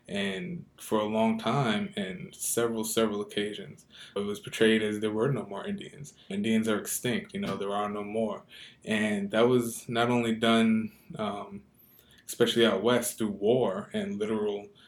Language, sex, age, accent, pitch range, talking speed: English, male, 20-39, American, 105-130 Hz, 165 wpm